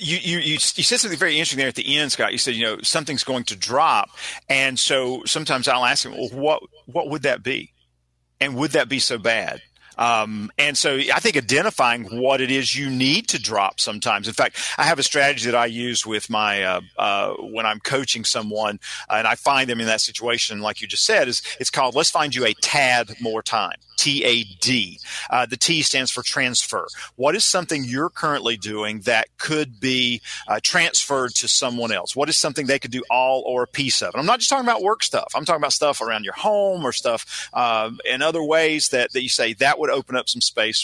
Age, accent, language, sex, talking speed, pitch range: 40-59, American, English, male, 230 wpm, 115-150 Hz